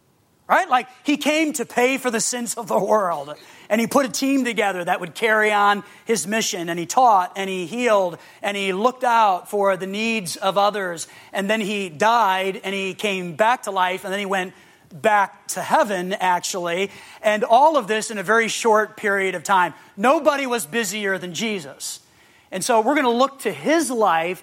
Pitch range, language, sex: 185-225 Hz, English, male